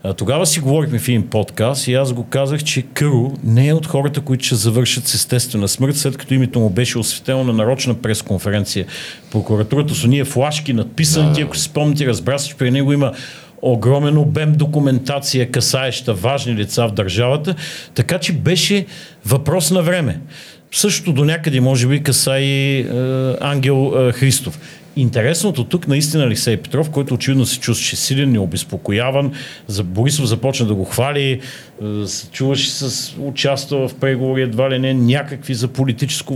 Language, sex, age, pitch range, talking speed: Bulgarian, male, 50-69, 120-145 Hz, 160 wpm